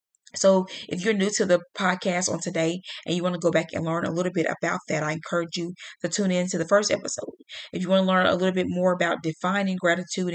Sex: female